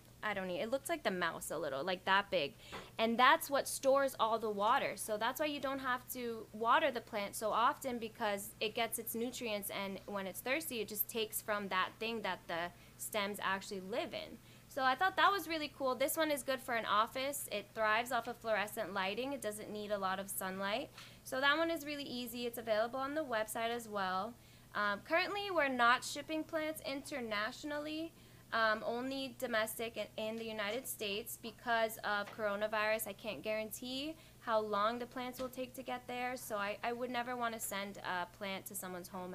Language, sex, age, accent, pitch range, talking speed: English, female, 10-29, American, 200-255 Hz, 205 wpm